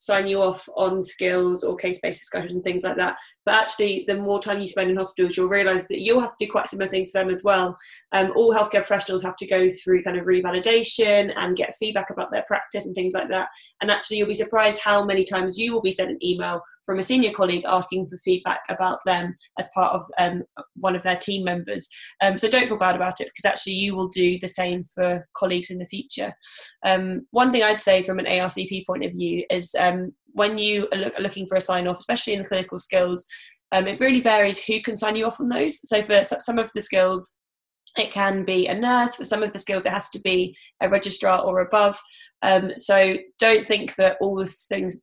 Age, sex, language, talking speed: 20-39, female, English, 235 wpm